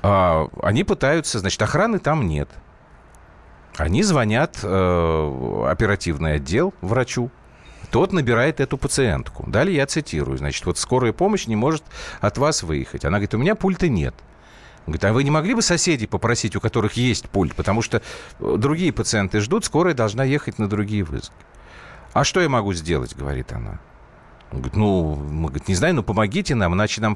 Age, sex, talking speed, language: 40-59, male, 165 wpm, Russian